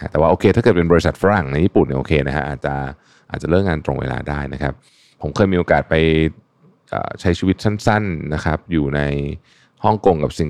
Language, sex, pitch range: Thai, male, 75-100 Hz